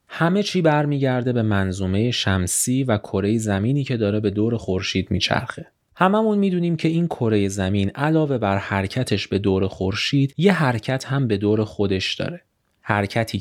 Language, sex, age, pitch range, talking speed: Persian, male, 30-49, 100-135 Hz, 155 wpm